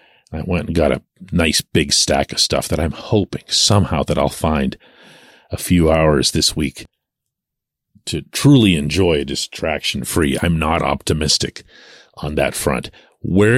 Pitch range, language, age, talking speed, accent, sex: 80-100 Hz, English, 40-59, 145 wpm, American, male